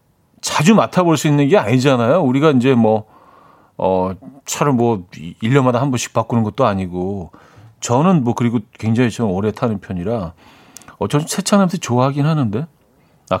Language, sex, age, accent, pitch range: Korean, male, 40-59, native, 115-160 Hz